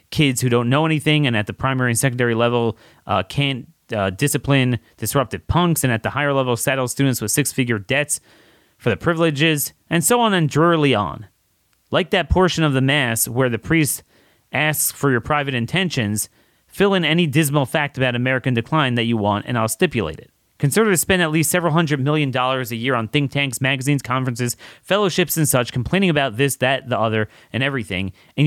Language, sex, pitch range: English, male, 120-155 Hz